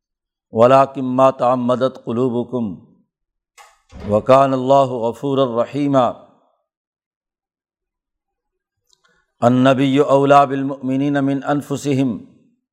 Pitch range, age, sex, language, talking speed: 130-145 Hz, 50-69, male, Urdu, 65 wpm